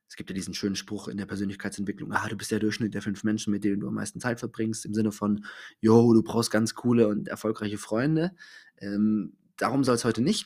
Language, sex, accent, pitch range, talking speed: German, male, German, 110-140 Hz, 235 wpm